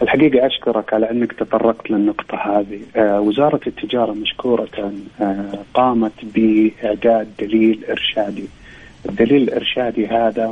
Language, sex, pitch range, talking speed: Arabic, male, 110-125 Hz, 110 wpm